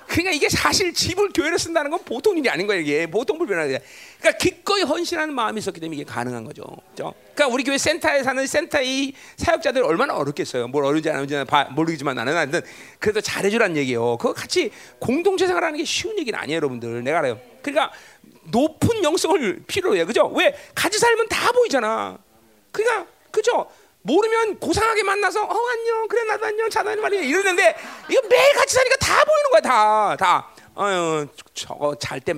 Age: 40-59